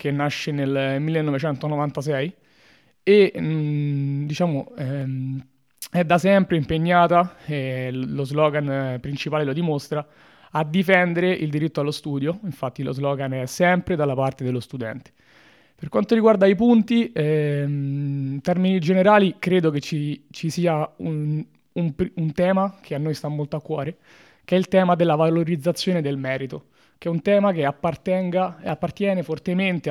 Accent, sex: native, male